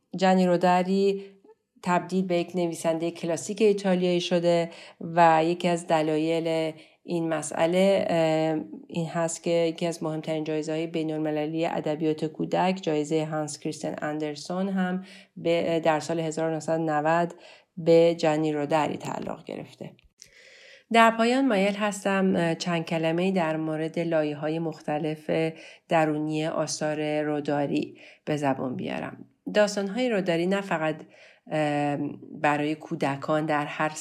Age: 40-59